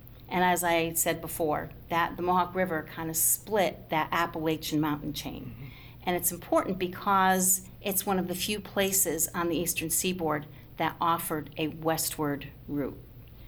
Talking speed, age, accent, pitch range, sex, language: 155 wpm, 50-69, American, 160-200 Hz, female, English